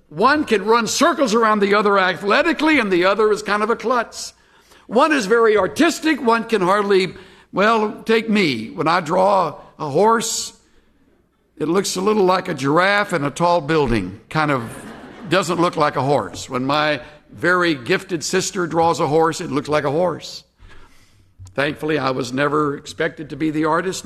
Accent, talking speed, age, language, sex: American, 175 wpm, 60-79, English, male